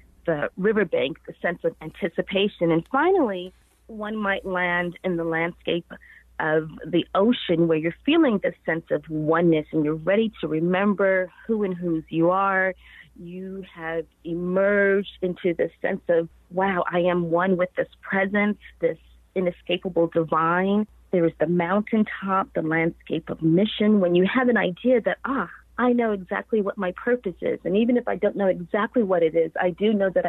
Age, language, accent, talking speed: 40-59, English, American, 170 wpm